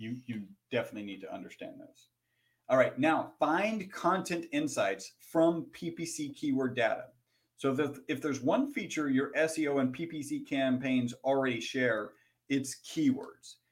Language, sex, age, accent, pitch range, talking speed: English, male, 40-59, American, 120-145 Hz, 145 wpm